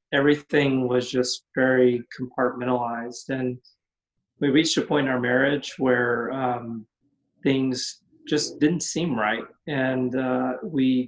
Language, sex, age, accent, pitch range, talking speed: English, male, 30-49, American, 125-135 Hz, 125 wpm